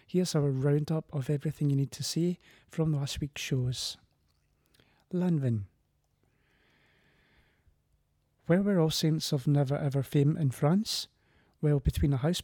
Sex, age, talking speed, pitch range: male, 30-49, 135 wpm, 130-155 Hz